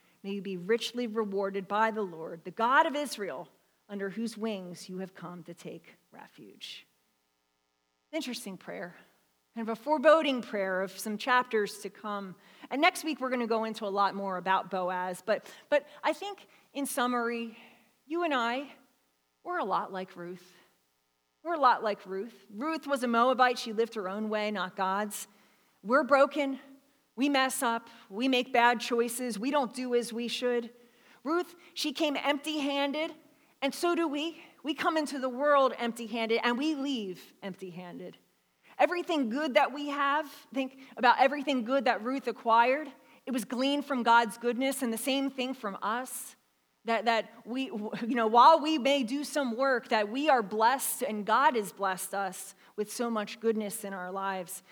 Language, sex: English, female